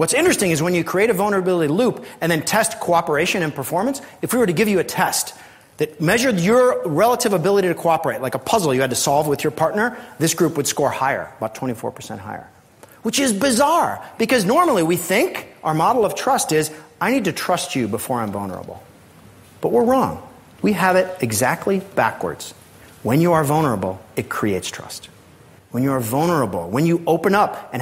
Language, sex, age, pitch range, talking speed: English, male, 40-59, 135-195 Hz, 200 wpm